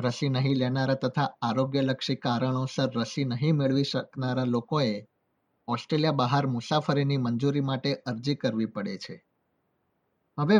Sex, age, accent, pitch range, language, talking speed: male, 50-69, native, 125-150 Hz, Gujarati, 100 wpm